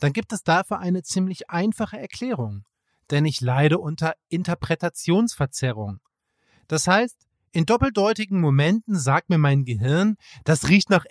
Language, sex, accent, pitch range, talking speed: German, male, German, 145-195 Hz, 135 wpm